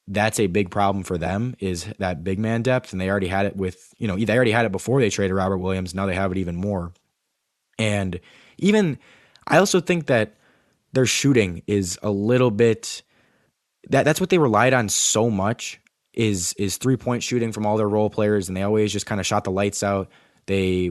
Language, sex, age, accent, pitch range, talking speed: English, male, 20-39, American, 95-115 Hz, 215 wpm